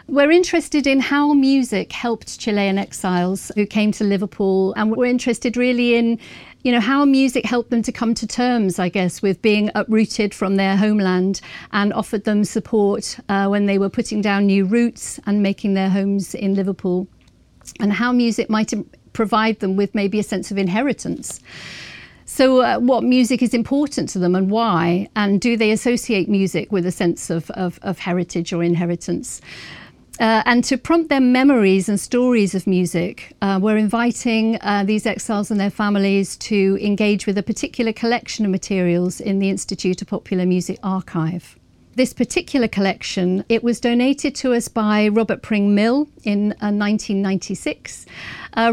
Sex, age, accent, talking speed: female, 50-69, British, 170 wpm